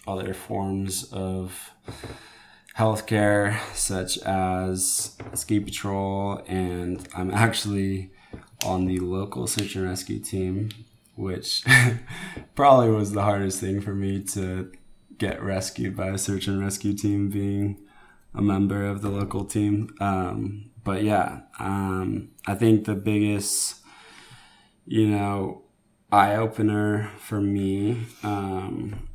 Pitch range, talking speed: 95-105 Hz, 115 wpm